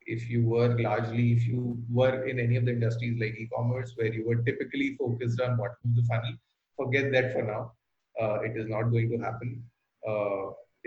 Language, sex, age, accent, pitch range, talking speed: English, male, 30-49, Indian, 115-125 Hz, 200 wpm